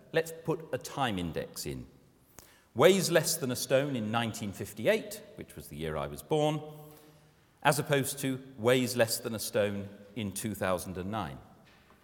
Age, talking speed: 40-59, 150 wpm